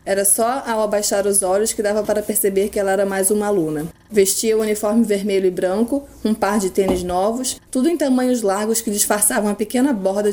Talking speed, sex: 215 wpm, female